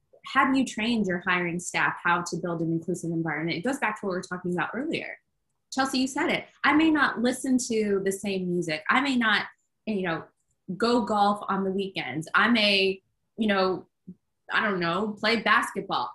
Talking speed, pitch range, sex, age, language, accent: 195 wpm, 185-235 Hz, female, 20-39, English, American